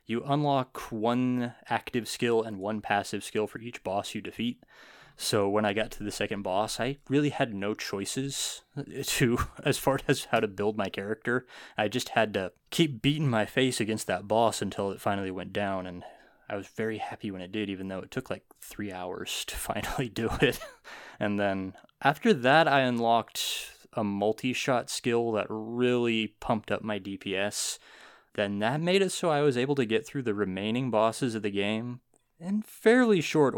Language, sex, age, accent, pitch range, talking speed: English, male, 20-39, American, 100-125 Hz, 190 wpm